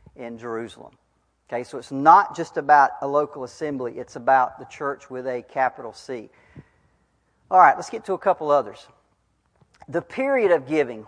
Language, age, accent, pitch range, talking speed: English, 40-59, American, 135-195 Hz, 170 wpm